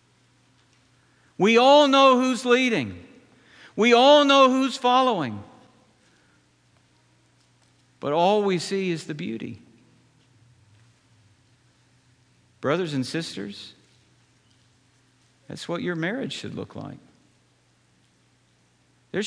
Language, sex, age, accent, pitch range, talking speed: English, male, 50-69, American, 115-145 Hz, 85 wpm